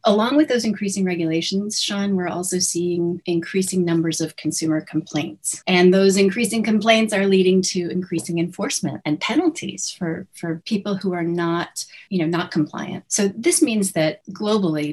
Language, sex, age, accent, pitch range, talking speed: English, female, 30-49, American, 165-195 Hz, 160 wpm